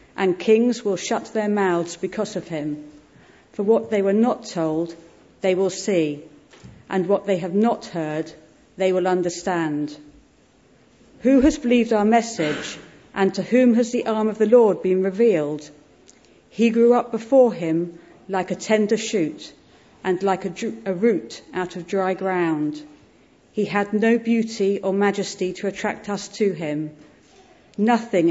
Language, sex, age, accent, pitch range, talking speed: English, female, 40-59, British, 165-215 Hz, 155 wpm